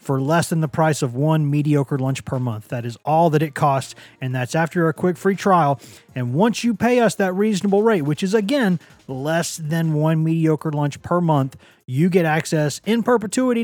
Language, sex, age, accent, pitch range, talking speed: English, male, 30-49, American, 135-170 Hz, 205 wpm